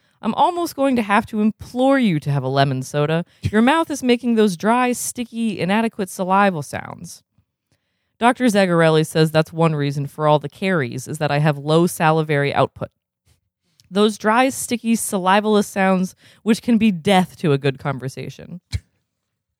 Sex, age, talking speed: female, 20-39, 160 wpm